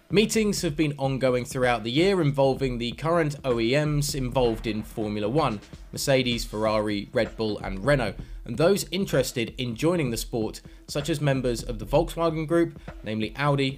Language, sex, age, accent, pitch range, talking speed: English, male, 20-39, British, 125-165 Hz, 160 wpm